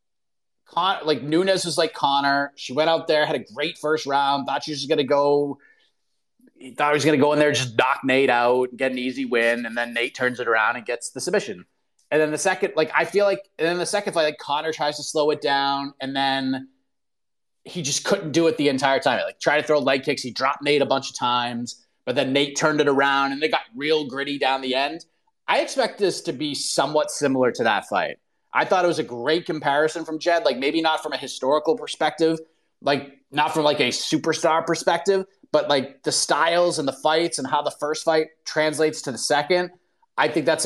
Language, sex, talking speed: English, male, 235 wpm